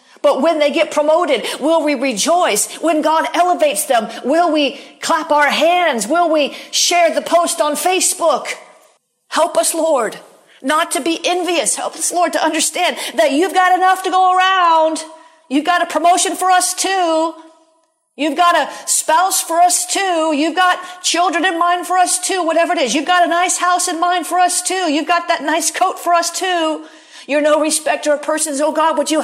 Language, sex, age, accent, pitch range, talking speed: English, female, 50-69, American, 275-340 Hz, 195 wpm